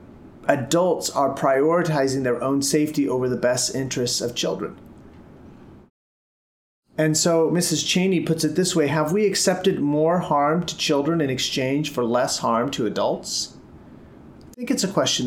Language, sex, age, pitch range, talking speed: English, male, 30-49, 120-165 Hz, 155 wpm